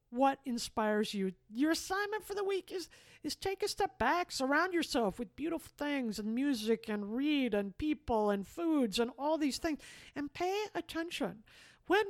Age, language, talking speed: 50-69, English, 175 wpm